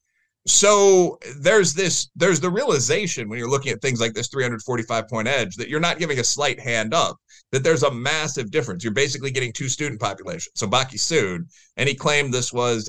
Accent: American